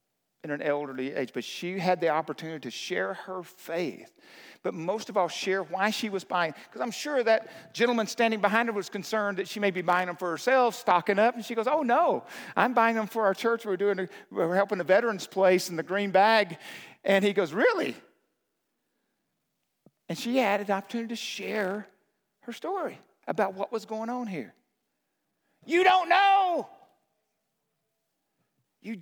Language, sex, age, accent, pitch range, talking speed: English, male, 50-69, American, 190-230 Hz, 180 wpm